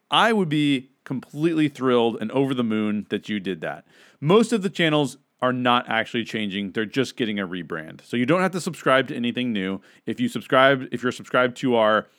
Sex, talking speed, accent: male, 220 wpm, American